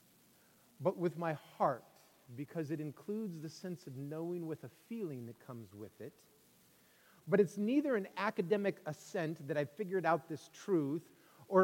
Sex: male